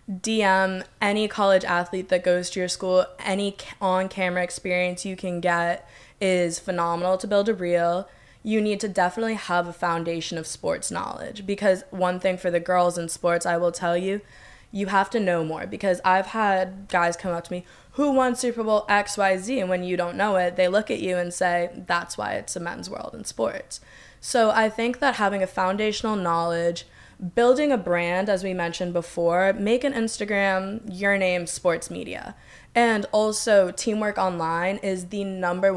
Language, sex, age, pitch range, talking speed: English, female, 10-29, 175-200 Hz, 185 wpm